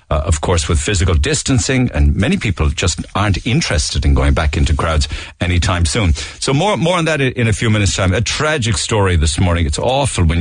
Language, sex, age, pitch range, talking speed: English, male, 50-69, 85-105 Hz, 220 wpm